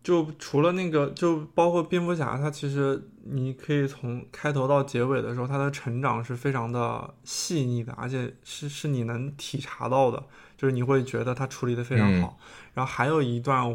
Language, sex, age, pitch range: Chinese, male, 20-39, 120-140 Hz